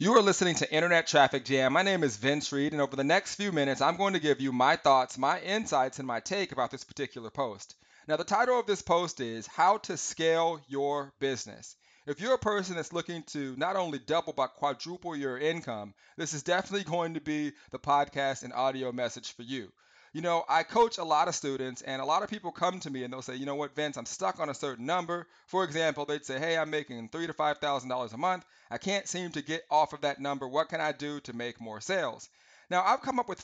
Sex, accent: male, American